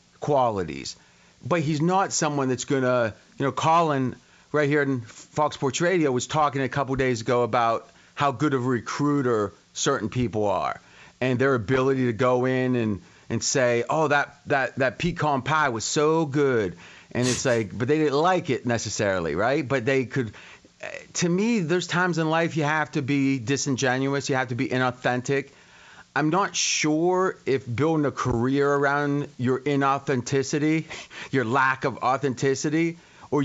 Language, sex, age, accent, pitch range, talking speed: English, male, 30-49, American, 125-155 Hz, 170 wpm